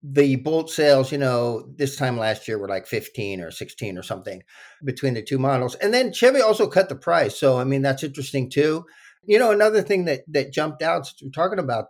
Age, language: 50-69, English